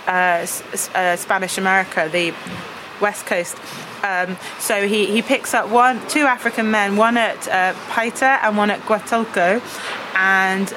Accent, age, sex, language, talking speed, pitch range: British, 20-39, female, English, 145 wpm, 180-215 Hz